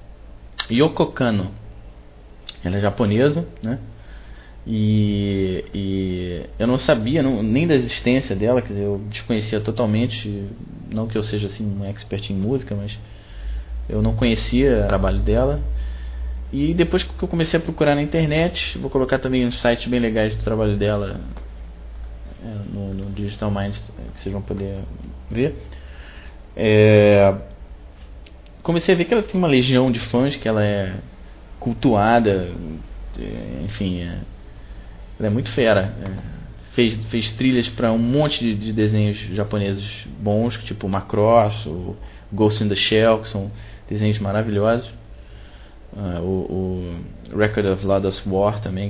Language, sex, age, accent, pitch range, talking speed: Portuguese, male, 20-39, Brazilian, 95-115 Hz, 145 wpm